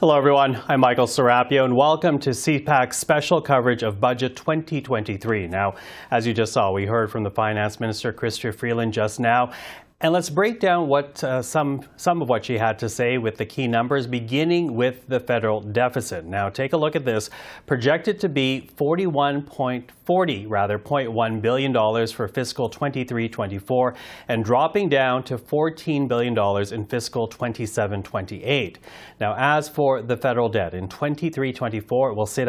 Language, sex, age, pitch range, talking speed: English, male, 30-49, 110-145 Hz, 165 wpm